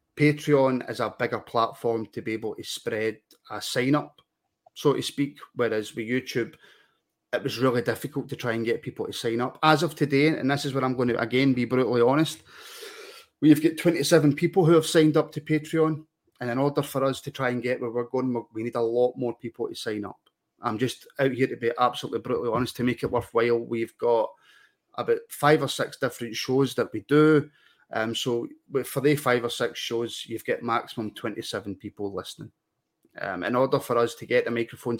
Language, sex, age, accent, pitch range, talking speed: English, male, 30-49, British, 115-145 Hz, 210 wpm